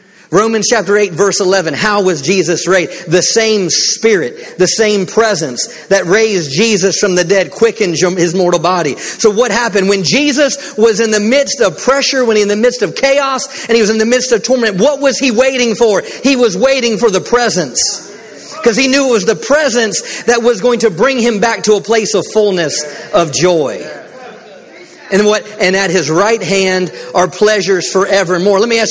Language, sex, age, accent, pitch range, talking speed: English, male, 40-59, American, 185-235 Hz, 200 wpm